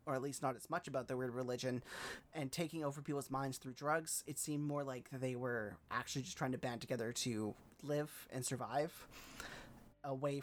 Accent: American